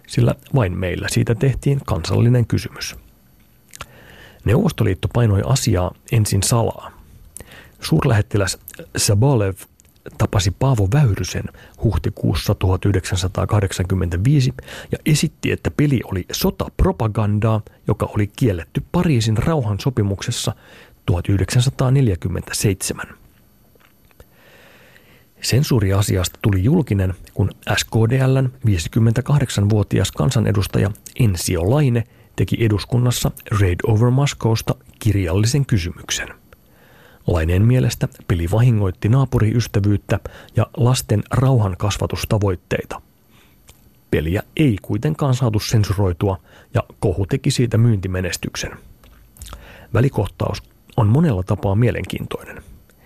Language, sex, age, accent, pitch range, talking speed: Finnish, male, 40-59, native, 100-125 Hz, 80 wpm